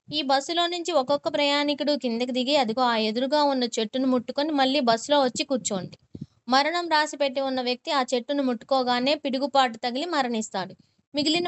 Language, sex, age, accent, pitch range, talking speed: Telugu, female, 20-39, native, 245-300 Hz, 145 wpm